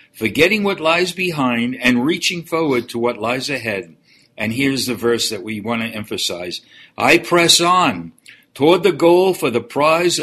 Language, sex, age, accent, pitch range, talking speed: English, male, 60-79, American, 120-160 Hz, 170 wpm